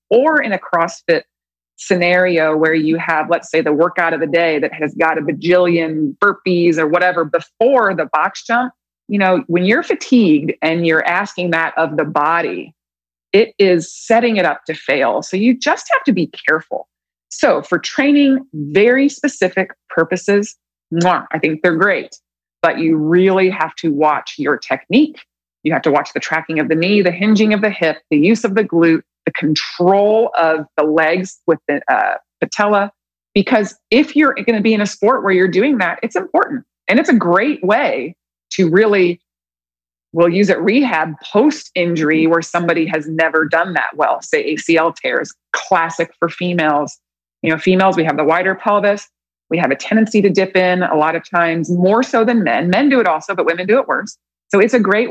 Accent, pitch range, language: American, 160-210 Hz, English